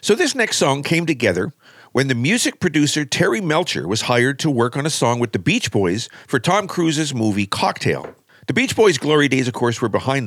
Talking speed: 215 wpm